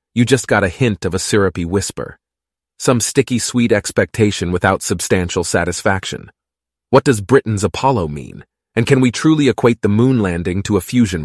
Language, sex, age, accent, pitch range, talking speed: English, male, 30-49, American, 90-120 Hz, 165 wpm